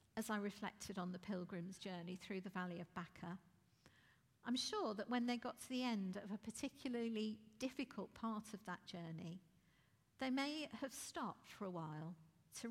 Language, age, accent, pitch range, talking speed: English, 50-69, British, 180-230 Hz, 175 wpm